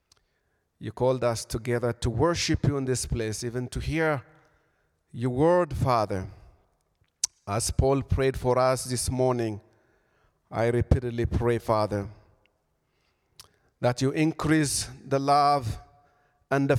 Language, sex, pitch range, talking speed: English, male, 120-155 Hz, 120 wpm